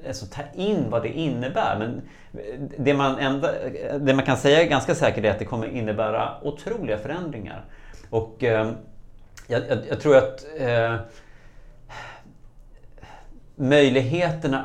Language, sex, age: Swedish, male, 30-49